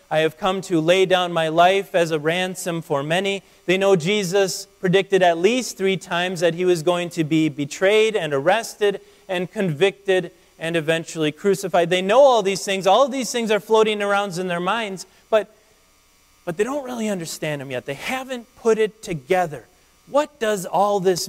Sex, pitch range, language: male, 175-215 Hz, English